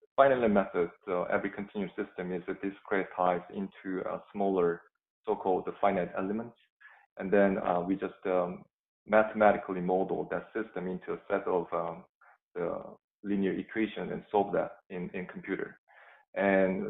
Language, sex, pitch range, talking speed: English, male, 95-105 Hz, 140 wpm